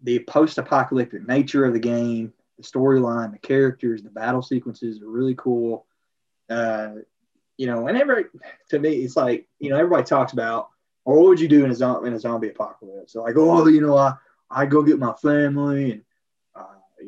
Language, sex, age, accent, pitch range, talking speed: English, male, 20-39, American, 115-140 Hz, 190 wpm